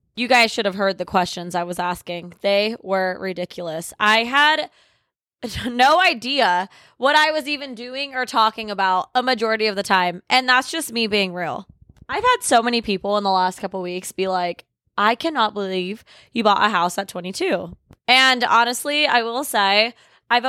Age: 20-39